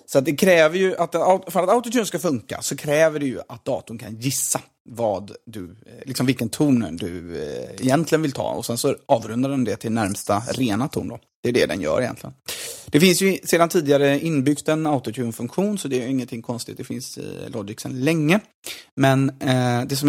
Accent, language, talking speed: native, Swedish, 205 wpm